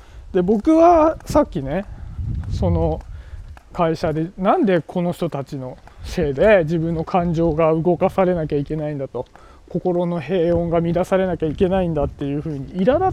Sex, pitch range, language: male, 145-210 Hz, Japanese